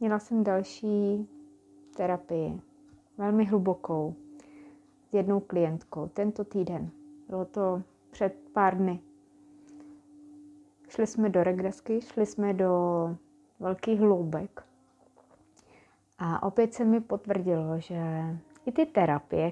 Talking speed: 105 wpm